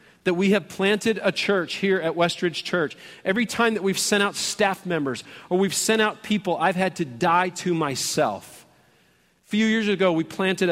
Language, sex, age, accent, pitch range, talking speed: English, male, 40-59, American, 155-195 Hz, 195 wpm